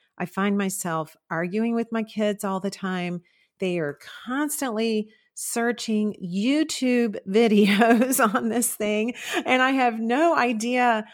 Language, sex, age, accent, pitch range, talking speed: English, female, 40-59, American, 185-255 Hz, 130 wpm